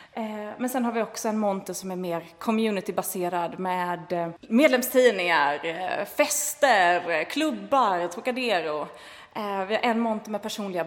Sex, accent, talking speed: female, native, 120 wpm